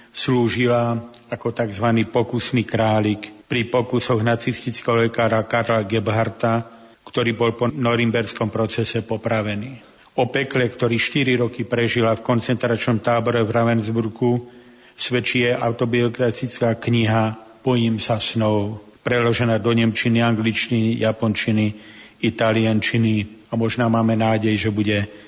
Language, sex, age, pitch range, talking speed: Slovak, male, 50-69, 115-120 Hz, 110 wpm